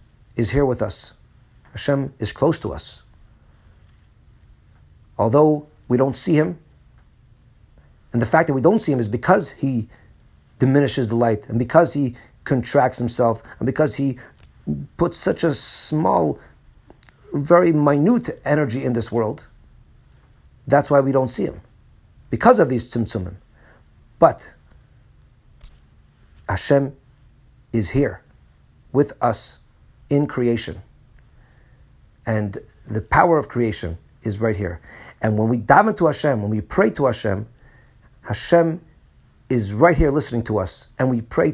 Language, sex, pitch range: English, male, 110-140 Hz